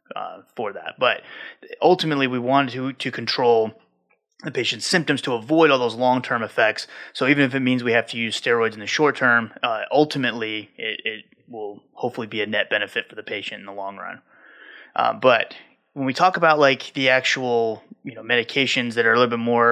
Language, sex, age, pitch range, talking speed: English, male, 20-39, 115-135 Hz, 205 wpm